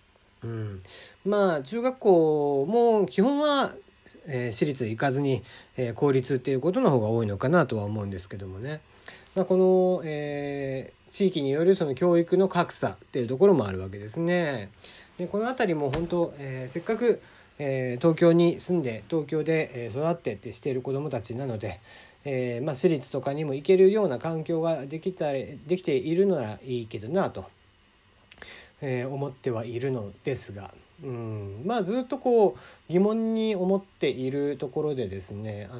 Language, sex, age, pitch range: Japanese, male, 40-59, 120-180 Hz